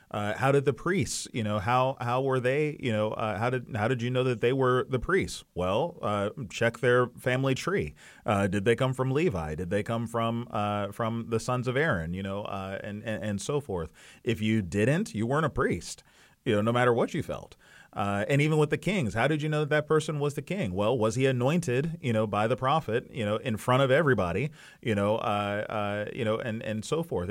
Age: 30-49